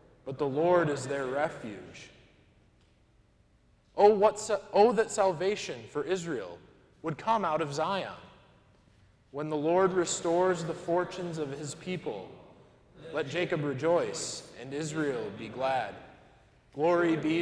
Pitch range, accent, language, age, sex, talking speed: 135-175 Hz, American, English, 20-39, male, 125 wpm